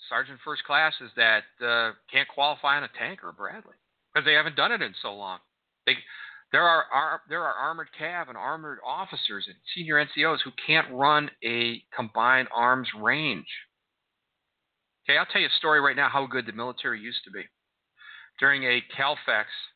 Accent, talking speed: American, 175 wpm